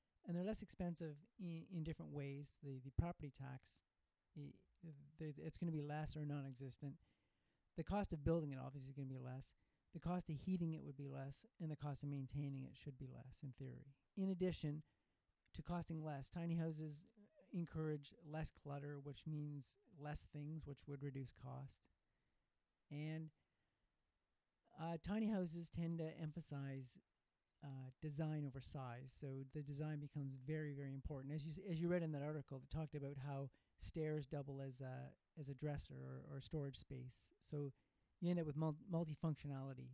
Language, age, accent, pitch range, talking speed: English, 40-59, American, 135-160 Hz, 175 wpm